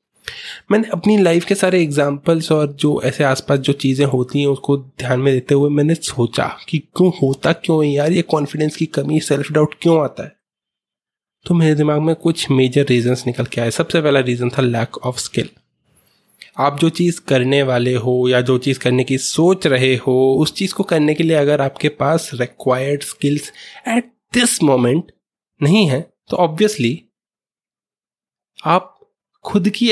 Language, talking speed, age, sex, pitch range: Hindi, 175 wpm, 20-39, male, 130-165 Hz